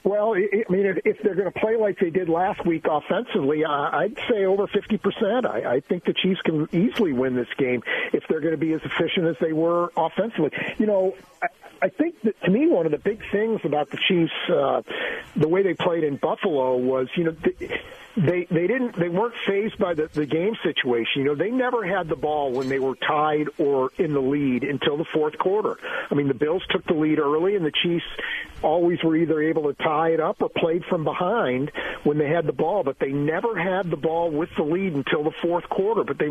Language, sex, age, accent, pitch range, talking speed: English, male, 50-69, American, 150-190 Hz, 225 wpm